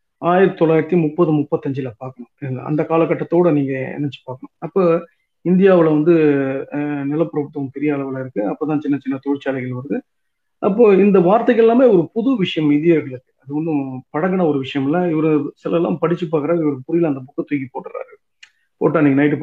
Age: 50-69